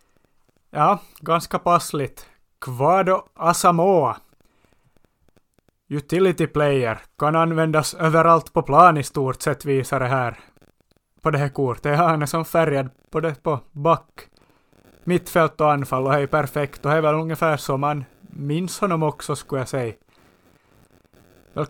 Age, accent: 30-49, Finnish